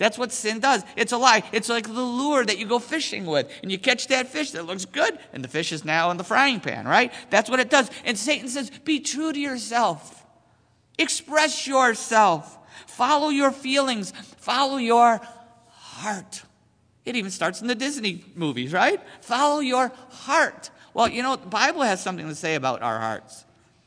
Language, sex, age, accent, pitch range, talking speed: English, male, 50-69, American, 165-250 Hz, 190 wpm